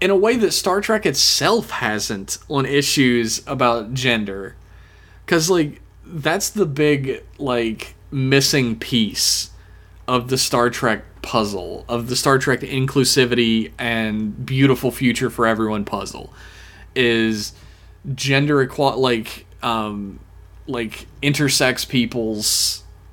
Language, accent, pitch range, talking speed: English, American, 105-140 Hz, 115 wpm